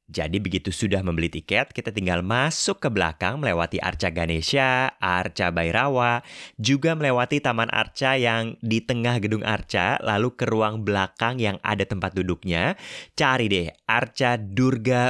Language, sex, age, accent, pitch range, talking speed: Indonesian, male, 30-49, native, 90-120 Hz, 145 wpm